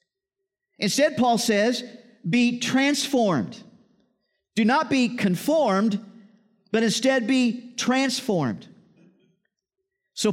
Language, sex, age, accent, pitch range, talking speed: English, male, 50-69, American, 180-235 Hz, 80 wpm